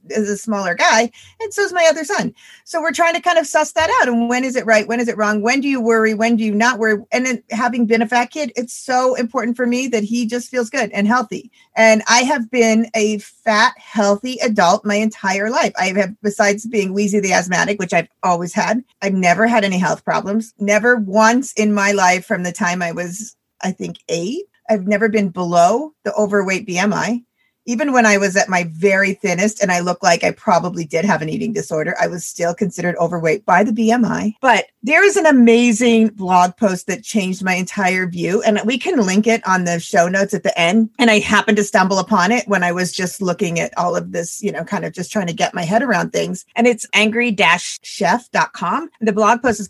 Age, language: 40-59, English